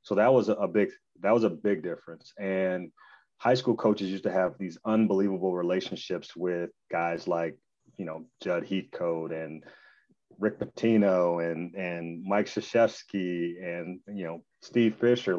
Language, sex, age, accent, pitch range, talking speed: English, male, 30-49, American, 90-110 Hz, 150 wpm